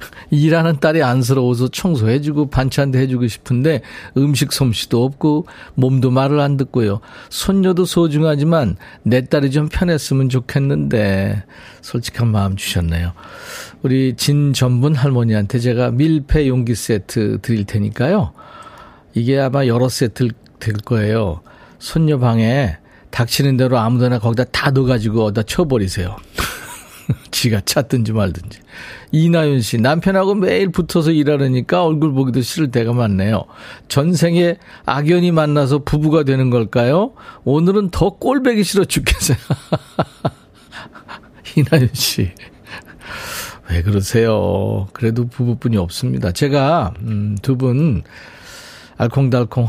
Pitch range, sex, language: 110-150 Hz, male, Korean